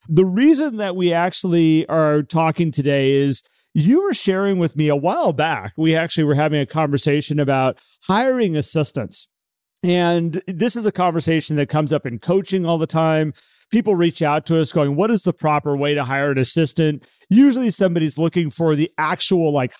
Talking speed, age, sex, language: 185 wpm, 40-59, male, English